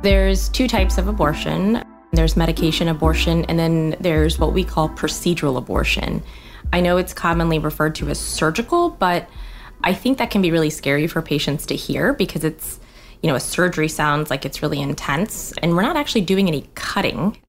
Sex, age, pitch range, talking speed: female, 20-39, 150-195 Hz, 185 wpm